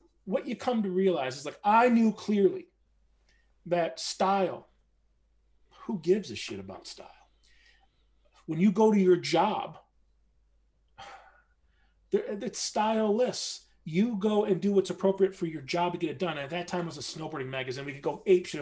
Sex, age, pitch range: male, 40-59, 170-215 Hz